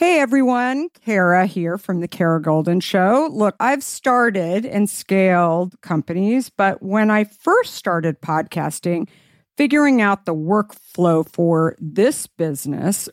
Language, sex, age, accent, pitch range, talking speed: English, female, 50-69, American, 160-210 Hz, 130 wpm